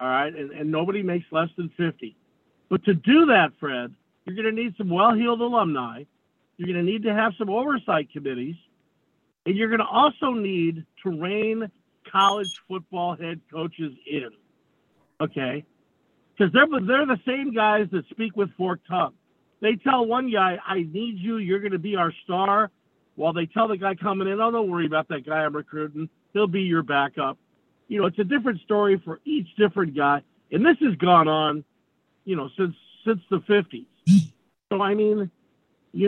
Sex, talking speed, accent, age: male, 185 wpm, American, 50-69